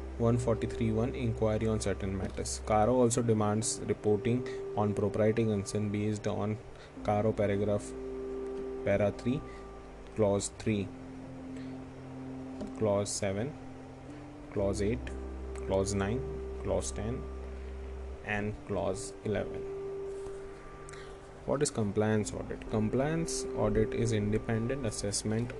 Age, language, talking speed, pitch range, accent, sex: 20-39, Hindi, 95 wpm, 100-130 Hz, native, male